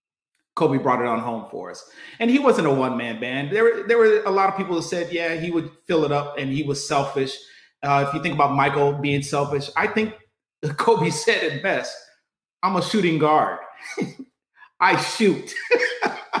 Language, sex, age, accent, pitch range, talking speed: English, male, 30-49, American, 145-220 Hz, 190 wpm